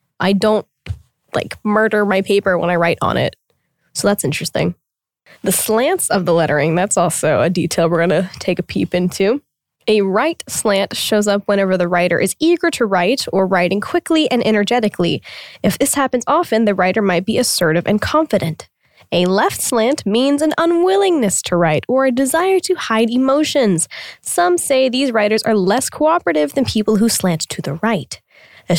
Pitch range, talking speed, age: 170-235 Hz, 180 wpm, 10-29